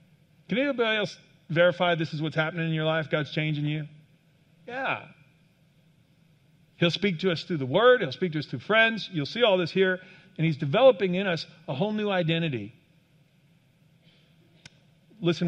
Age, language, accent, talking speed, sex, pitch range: 50-69, English, American, 165 wpm, male, 155-175 Hz